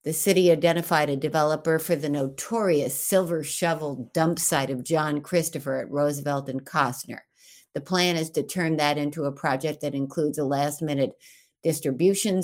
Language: English